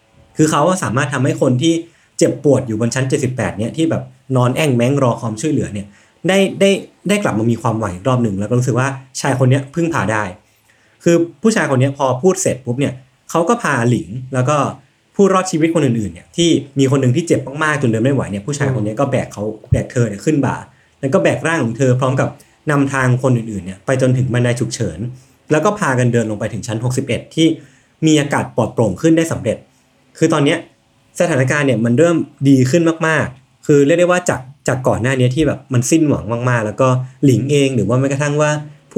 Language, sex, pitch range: Thai, male, 120-155 Hz